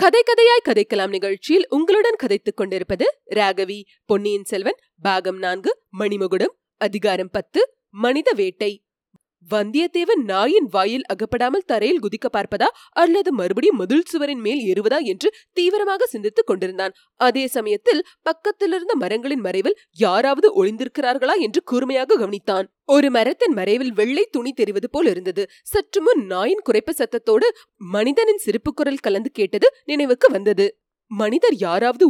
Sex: female